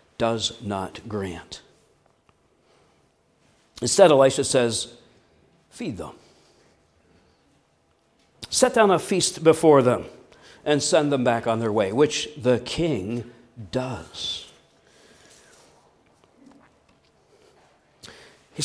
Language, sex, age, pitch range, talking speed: English, male, 60-79, 115-145 Hz, 85 wpm